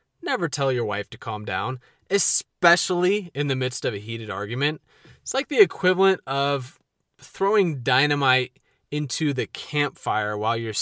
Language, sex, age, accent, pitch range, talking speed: English, male, 20-39, American, 120-180 Hz, 150 wpm